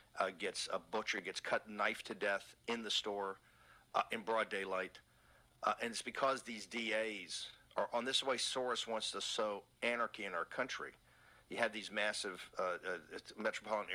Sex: male